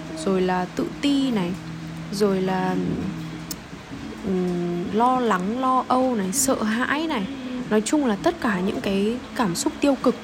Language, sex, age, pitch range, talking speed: Vietnamese, female, 10-29, 195-255 Hz, 150 wpm